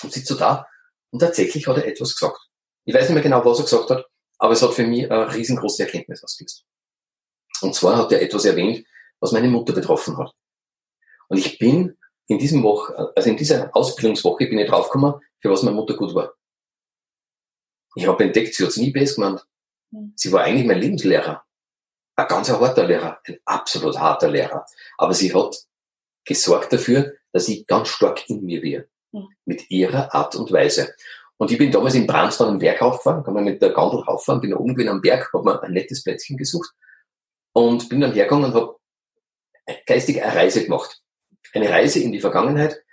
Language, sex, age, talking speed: German, male, 40-59, 195 wpm